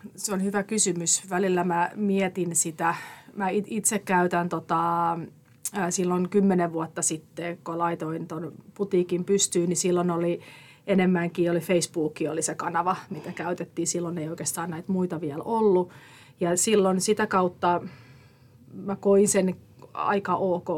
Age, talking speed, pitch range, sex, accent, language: 30-49, 140 wpm, 170-190 Hz, female, native, Finnish